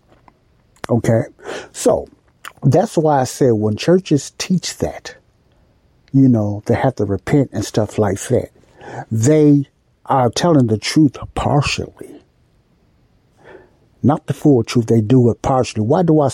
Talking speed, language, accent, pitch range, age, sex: 135 wpm, English, American, 110-140 Hz, 60-79, male